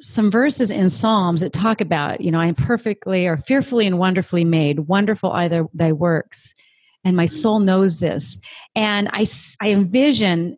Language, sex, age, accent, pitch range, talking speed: English, female, 40-59, American, 180-225 Hz, 170 wpm